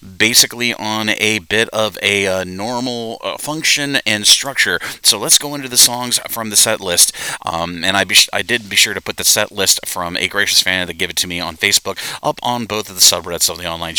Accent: American